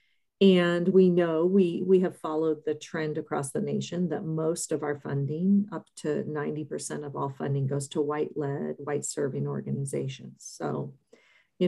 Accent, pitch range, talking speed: American, 150-185 Hz, 165 wpm